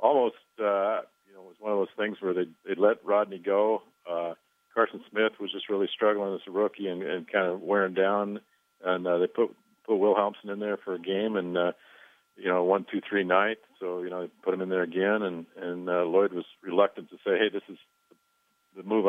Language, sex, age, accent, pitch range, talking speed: English, male, 50-69, American, 95-110 Hz, 235 wpm